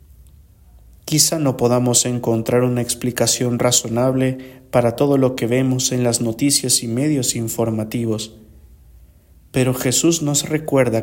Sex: male